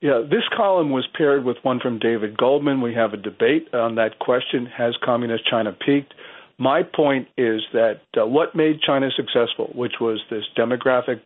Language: English